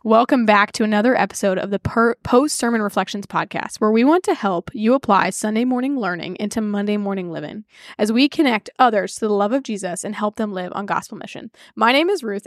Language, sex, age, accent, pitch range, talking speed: English, female, 10-29, American, 210-255 Hz, 215 wpm